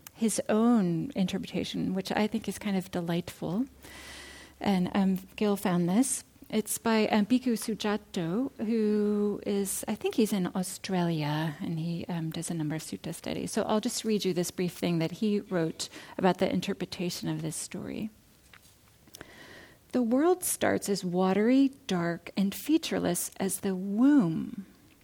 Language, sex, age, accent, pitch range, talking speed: English, female, 40-59, American, 185-235 Hz, 155 wpm